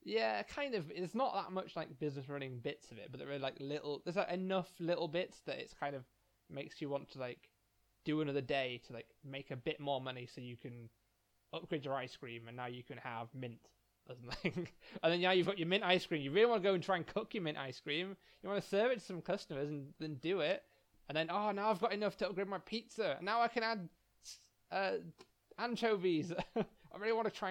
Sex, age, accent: male, 20-39, British